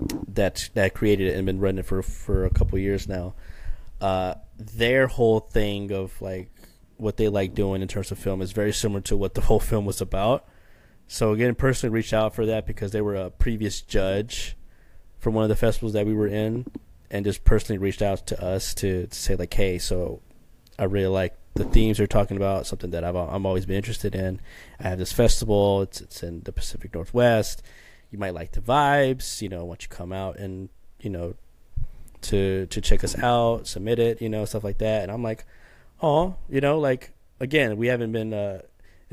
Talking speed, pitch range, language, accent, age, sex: 210 wpm, 95-110 Hz, English, American, 20-39, male